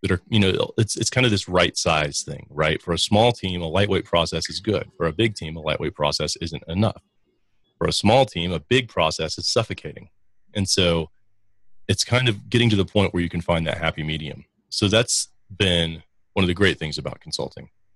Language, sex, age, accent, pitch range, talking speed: English, male, 30-49, American, 80-100 Hz, 220 wpm